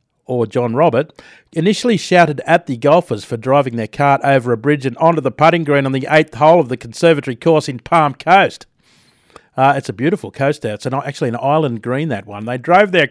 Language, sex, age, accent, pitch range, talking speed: English, male, 40-59, Australian, 125-165 Hz, 220 wpm